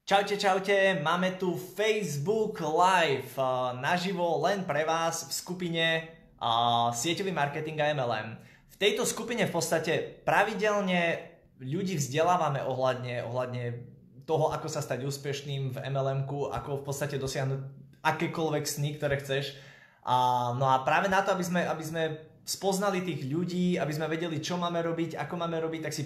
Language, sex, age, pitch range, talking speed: Slovak, male, 20-39, 135-175 Hz, 145 wpm